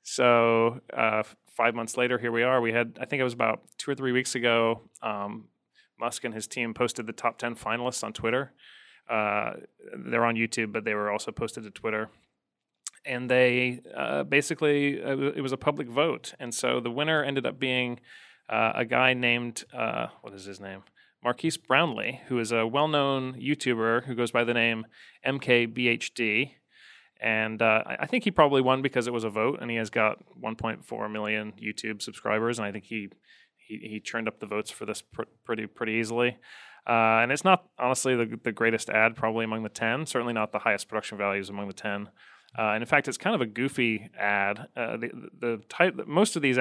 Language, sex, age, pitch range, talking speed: English, male, 30-49, 110-130 Hz, 205 wpm